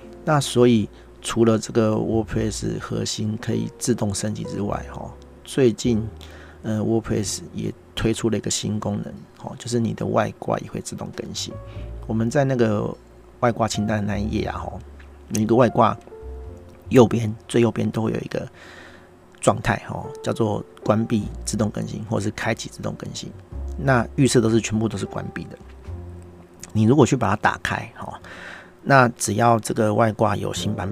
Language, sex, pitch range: Chinese, male, 90-115 Hz